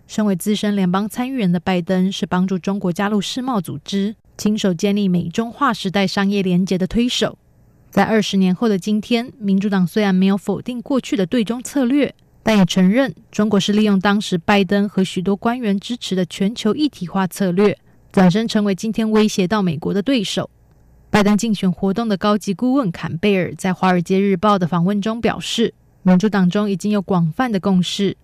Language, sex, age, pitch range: German, female, 20-39, 185-220 Hz